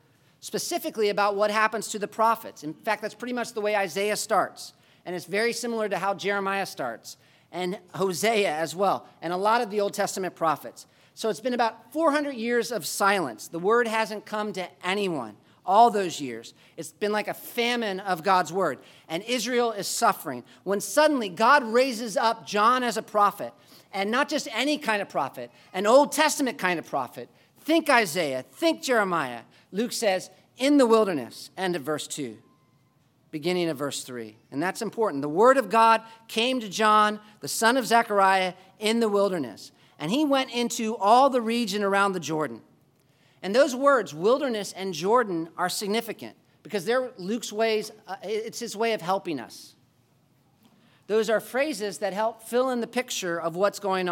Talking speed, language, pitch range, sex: 180 wpm, English, 165-230 Hz, male